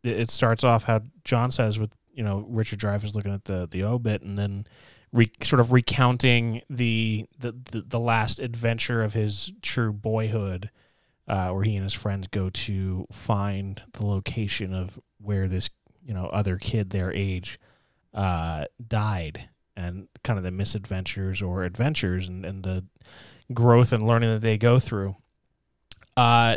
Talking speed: 165 wpm